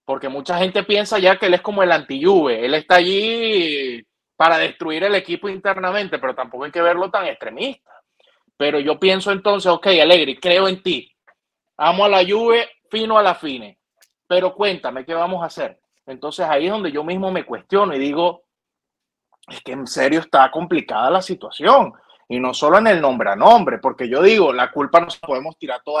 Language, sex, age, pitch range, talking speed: Spanish, male, 30-49, 145-190 Hz, 195 wpm